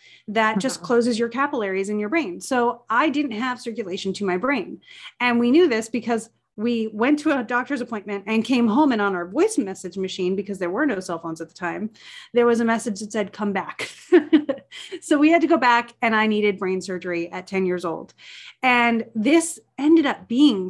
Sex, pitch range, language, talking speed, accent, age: female, 200-250 Hz, English, 210 wpm, American, 30-49